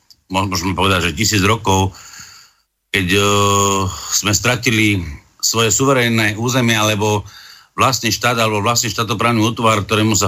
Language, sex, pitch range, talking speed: Slovak, male, 100-115 Hz, 125 wpm